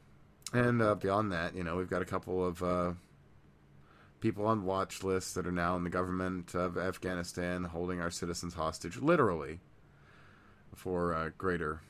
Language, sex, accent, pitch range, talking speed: English, male, American, 85-100 Hz, 160 wpm